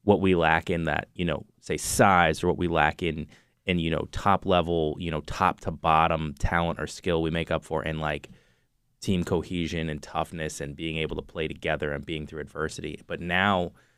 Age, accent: 20-39, American